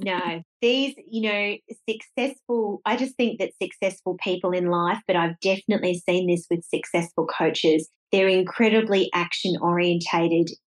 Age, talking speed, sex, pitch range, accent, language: 30-49, 140 wpm, female, 170-210 Hz, Australian, English